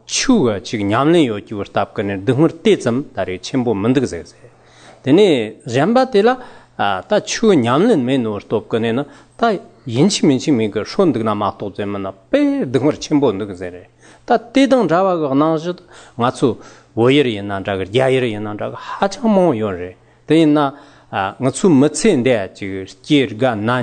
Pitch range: 110-160 Hz